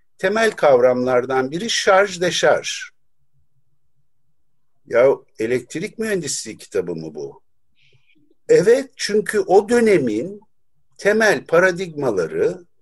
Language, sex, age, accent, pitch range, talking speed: Turkish, male, 50-69, native, 140-225 Hz, 80 wpm